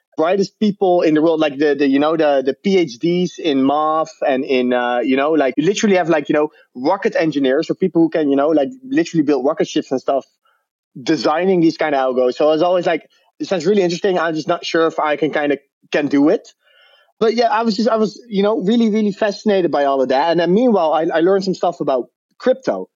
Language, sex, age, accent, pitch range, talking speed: English, male, 20-39, Dutch, 155-205 Hz, 245 wpm